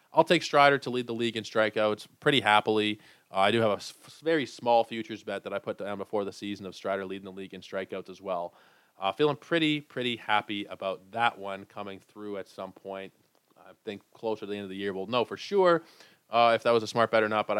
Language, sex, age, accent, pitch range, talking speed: English, male, 20-39, American, 100-125 Hz, 245 wpm